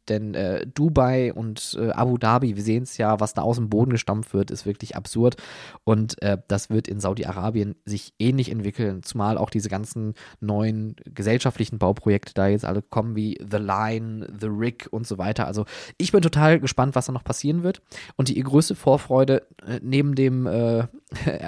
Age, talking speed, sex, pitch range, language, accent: 20-39, 185 wpm, male, 105-125 Hz, German, German